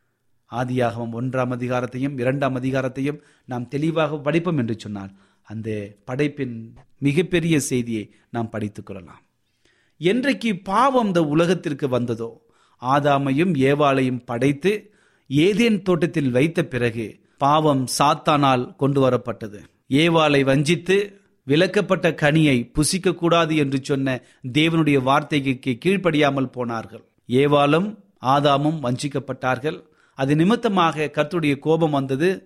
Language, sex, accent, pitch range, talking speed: Tamil, male, native, 125-160 Hz, 100 wpm